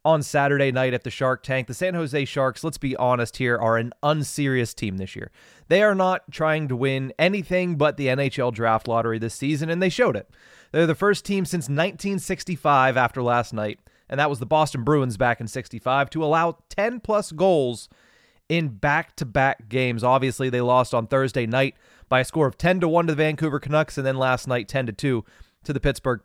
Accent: American